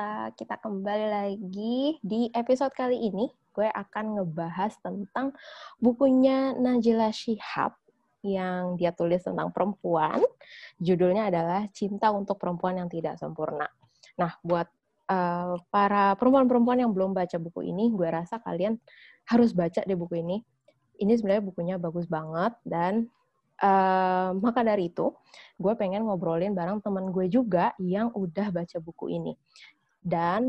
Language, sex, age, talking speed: English, female, 20-39, 135 wpm